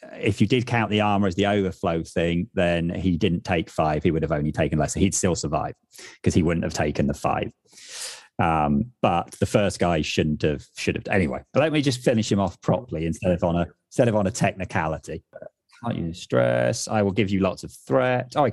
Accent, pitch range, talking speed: British, 85-115 Hz, 225 wpm